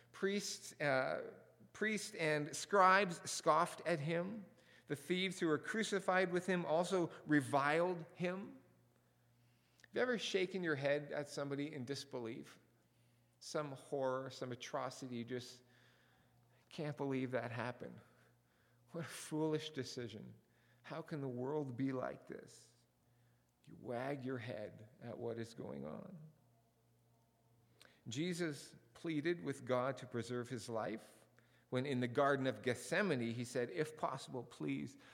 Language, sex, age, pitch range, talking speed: English, male, 40-59, 120-170 Hz, 130 wpm